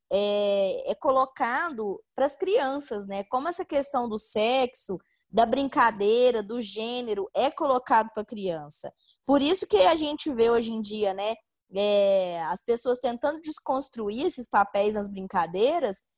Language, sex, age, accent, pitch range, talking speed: Portuguese, female, 20-39, Brazilian, 215-290 Hz, 150 wpm